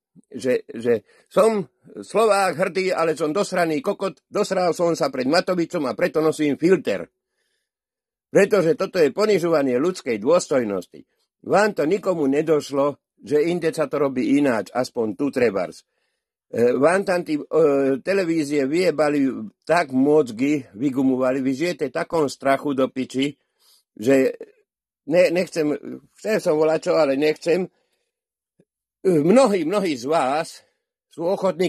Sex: male